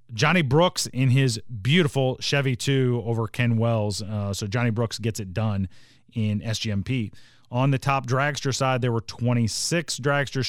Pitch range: 115-135 Hz